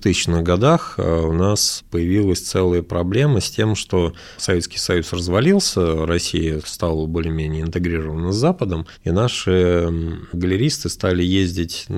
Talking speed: 125 wpm